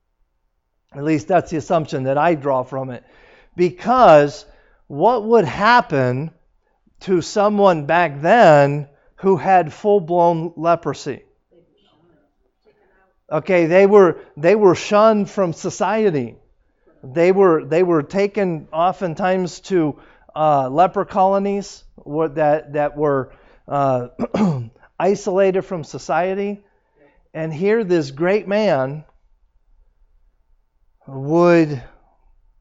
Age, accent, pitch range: 50-69, American, 135-185 Hz